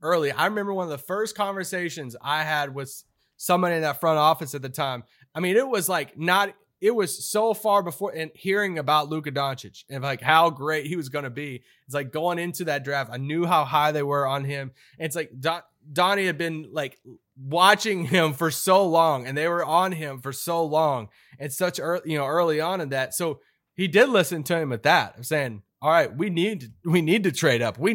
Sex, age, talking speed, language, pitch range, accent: male, 20-39, 225 wpm, English, 135-175 Hz, American